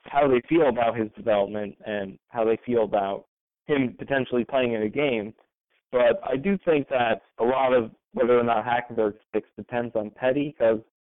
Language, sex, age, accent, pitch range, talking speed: English, male, 20-39, American, 110-130 Hz, 185 wpm